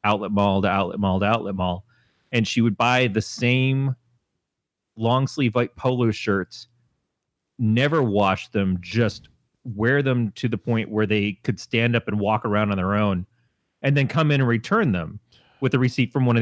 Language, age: English, 30-49